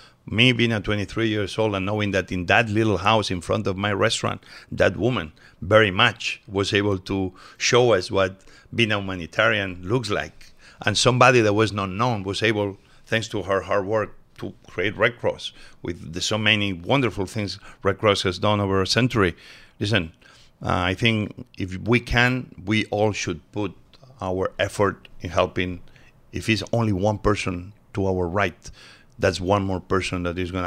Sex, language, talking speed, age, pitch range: male, English, 180 wpm, 50-69, 90-110 Hz